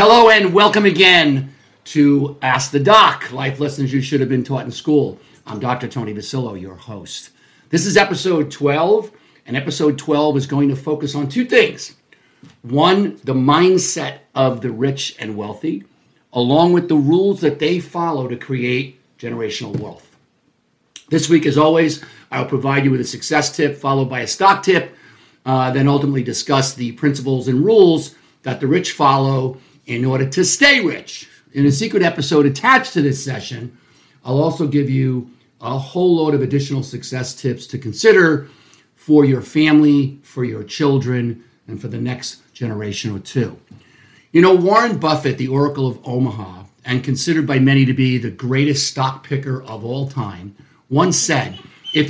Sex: male